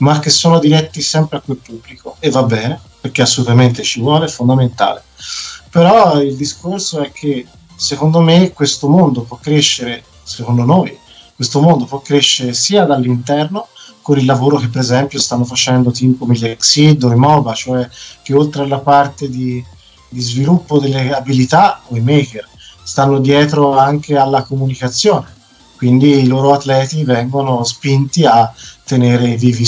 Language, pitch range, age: Italian, 125-145 Hz, 40-59